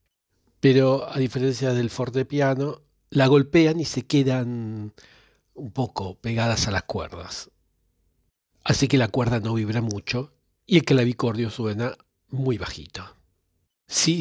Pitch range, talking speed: 110-145 Hz, 125 wpm